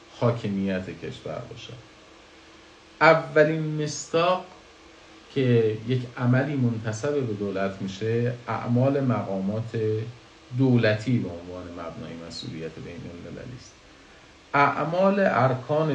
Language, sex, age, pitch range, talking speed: Persian, male, 50-69, 95-135 Hz, 85 wpm